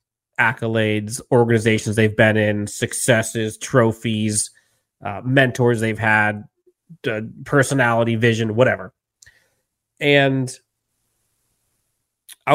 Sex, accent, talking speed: male, American, 80 wpm